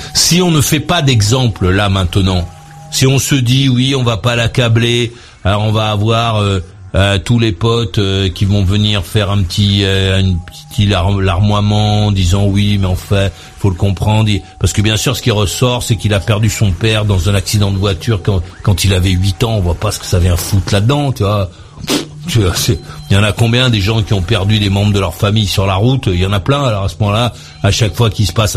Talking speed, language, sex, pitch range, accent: 245 wpm, French, male, 100-125 Hz, French